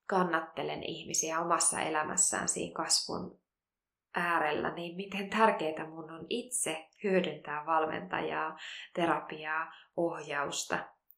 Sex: female